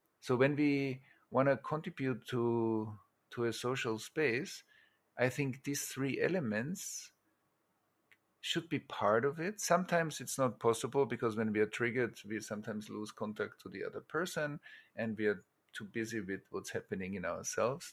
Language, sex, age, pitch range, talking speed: English, male, 50-69, 110-130 Hz, 160 wpm